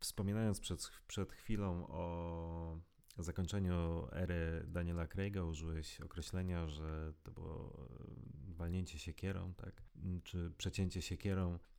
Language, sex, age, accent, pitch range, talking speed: Polish, male, 30-49, native, 85-100 Hz, 100 wpm